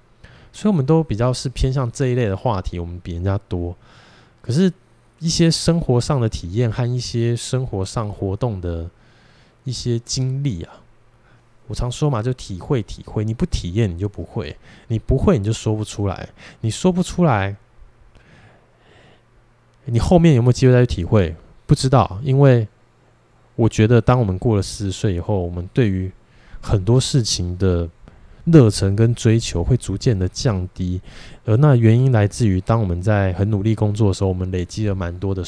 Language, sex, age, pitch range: Chinese, male, 20-39, 95-125 Hz